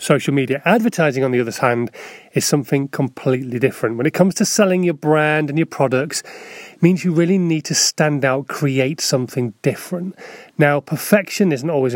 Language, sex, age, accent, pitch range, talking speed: English, male, 30-49, British, 130-170 Hz, 180 wpm